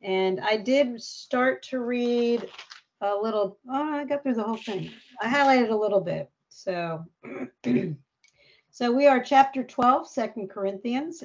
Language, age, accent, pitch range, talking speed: English, 40-59, American, 195-260 Hz, 150 wpm